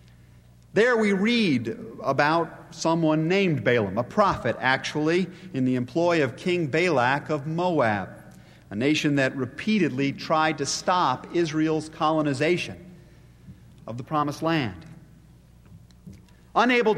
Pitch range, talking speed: 130-185 Hz, 115 wpm